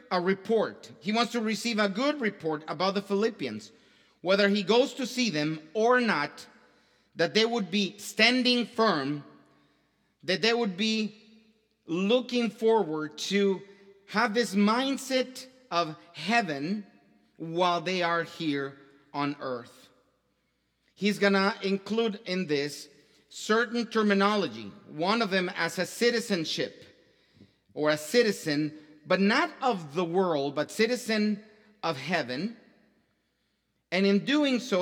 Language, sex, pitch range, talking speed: English, male, 160-225 Hz, 125 wpm